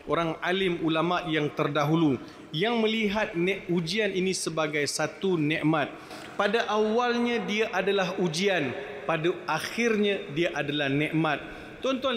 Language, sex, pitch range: Malay, male, 180-220 Hz